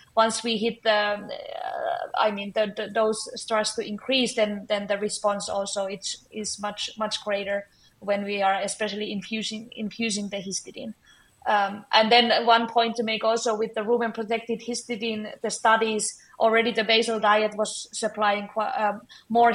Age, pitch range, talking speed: 20-39, 205-230 Hz, 165 wpm